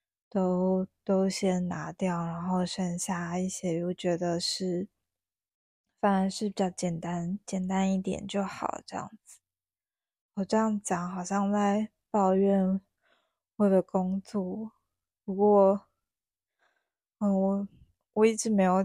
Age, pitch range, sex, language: 20-39, 175-200 Hz, female, Chinese